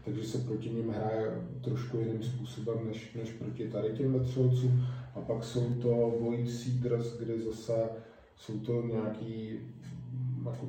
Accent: native